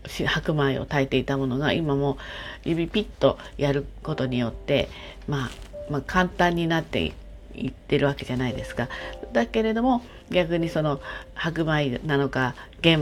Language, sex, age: Japanese, female, 40-59